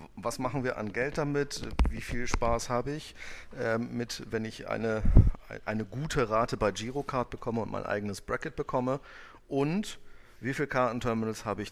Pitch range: 100-125 Hz